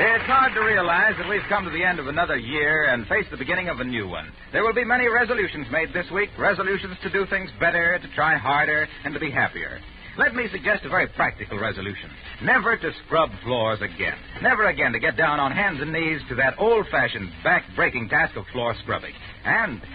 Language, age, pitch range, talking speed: English, 60-79, 135-200 Hz, 215 wpm